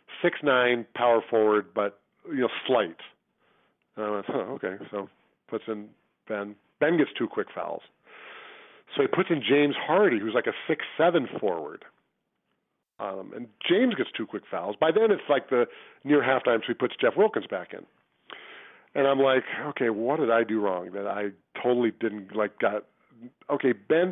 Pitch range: 110-150 Hz